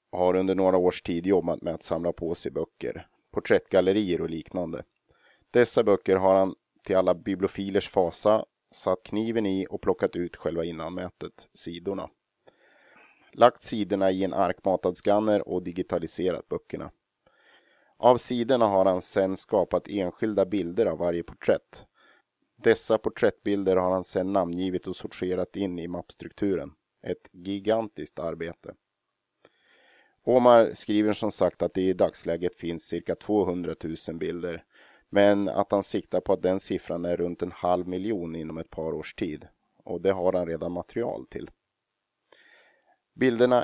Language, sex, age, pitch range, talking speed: Swedish, male, 30-49, 90-100 Hz, 145 wpm